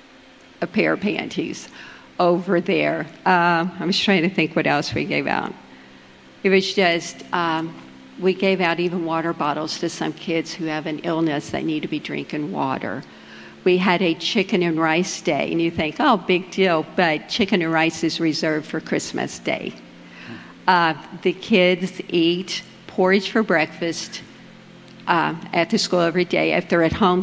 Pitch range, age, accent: 160-185 Hz, 50-69, American